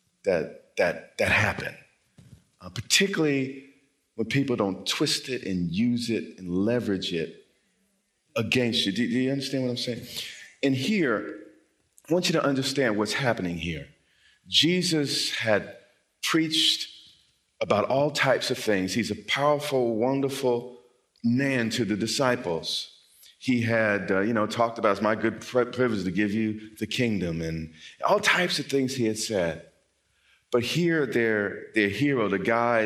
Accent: American